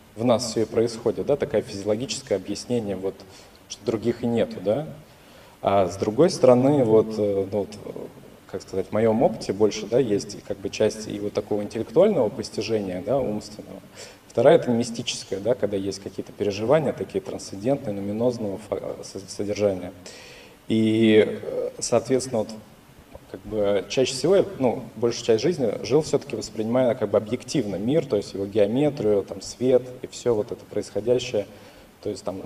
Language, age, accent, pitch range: Russian, 20-39, native, 100-125 Hz